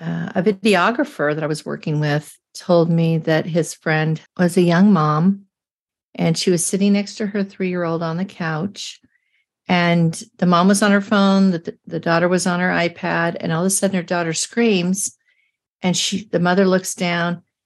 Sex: female